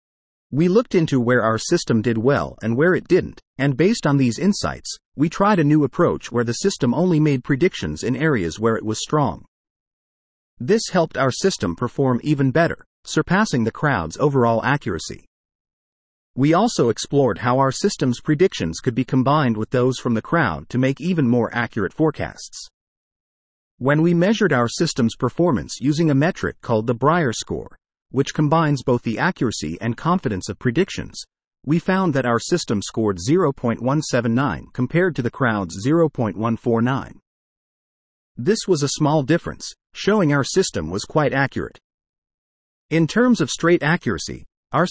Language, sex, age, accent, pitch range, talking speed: English, male, 40-59, American, 110-160 Hz, 155 wpm